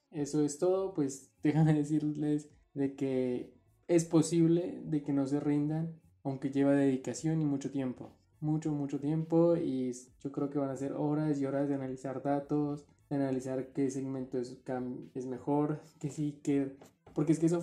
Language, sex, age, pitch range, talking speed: Spanish, male, 20-39, 135-160 Hz, 170 wpm